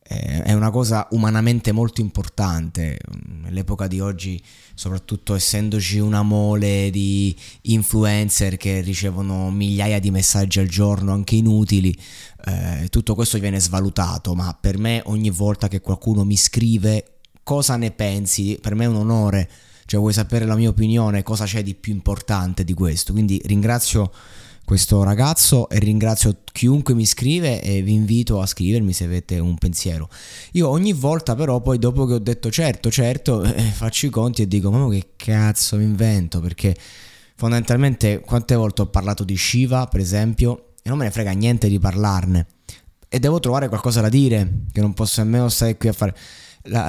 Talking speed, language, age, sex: 170 wpm, Italian, 20-39, male